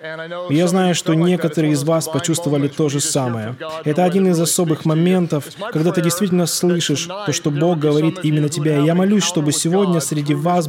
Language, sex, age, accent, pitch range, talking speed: Russian, male, 20-39, native, 155-200 Hz, 175 wpm